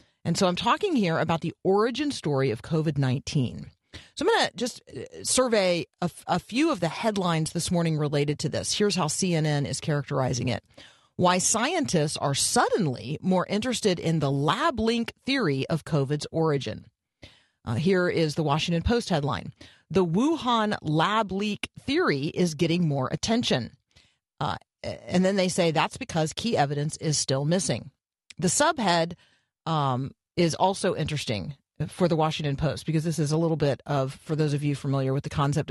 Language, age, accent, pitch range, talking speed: English, 40-59, American, 145-195 Hz, 170 wpm